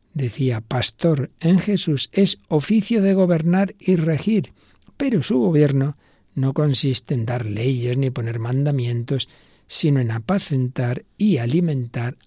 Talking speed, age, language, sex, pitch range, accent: 125 wpm, 60-79, Spanish, male, 120-155 Hz, Spanish